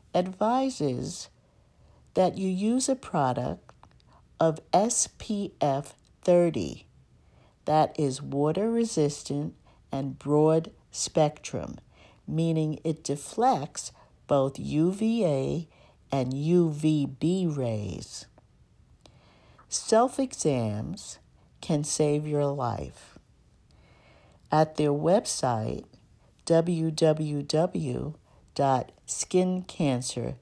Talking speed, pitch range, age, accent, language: 75 wpm, 135-175 Hz, 50-69, American, English